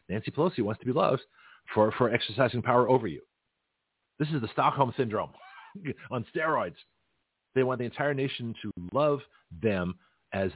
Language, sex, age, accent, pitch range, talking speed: English, male, 40-59, American, 95-130 Hz, 160 wpm